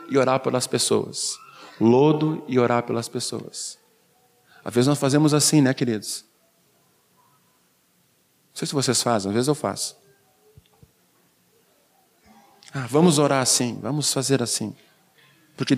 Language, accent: Portuguese, Brazilian